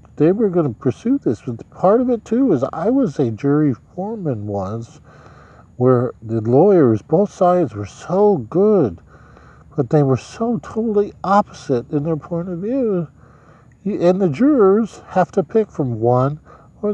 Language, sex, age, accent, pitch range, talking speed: English, male, 50-69, American, 115-180 Hz, 165 wpm